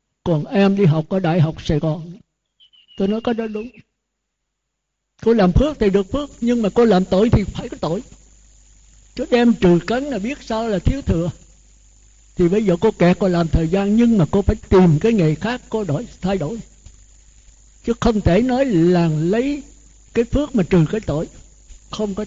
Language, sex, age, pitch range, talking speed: Vietnamese, male, 60-79, 160-220 Hz, 200 wpm